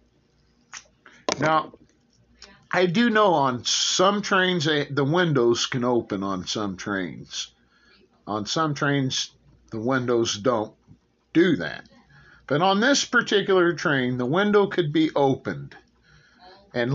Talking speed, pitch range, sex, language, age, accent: 115 wpm, 120-185 Hz, male, English, 50-69, American